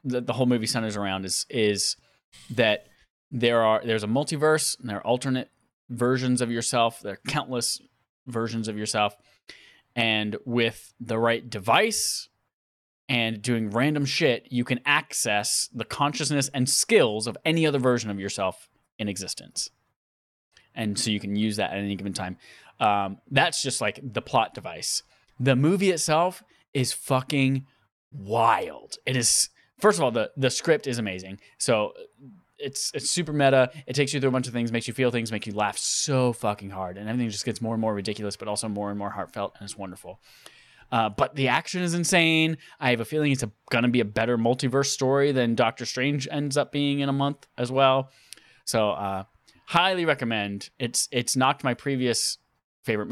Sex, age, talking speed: male, 20-39, 185 wpm